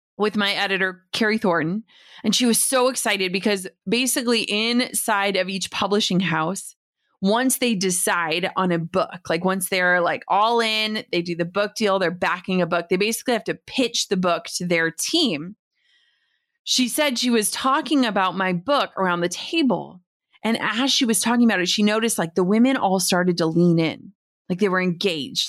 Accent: American